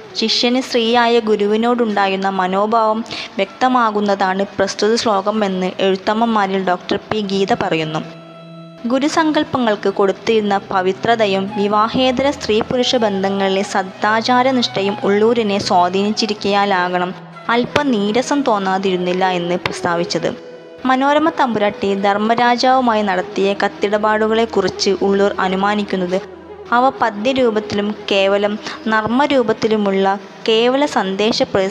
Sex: female